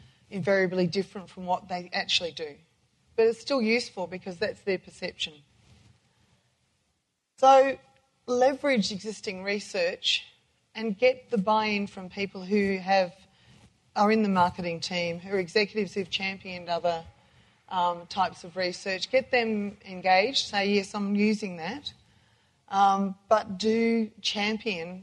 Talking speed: 130 wpm